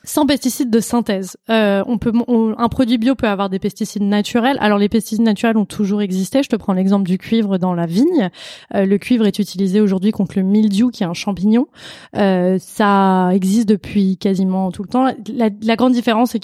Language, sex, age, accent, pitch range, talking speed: French, female, 20-39, French, 195-235 Hz, 200 wpm